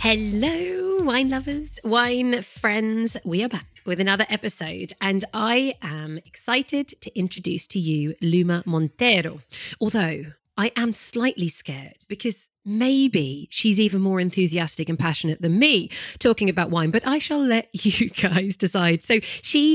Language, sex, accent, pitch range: English, female, British, 175-230 Hz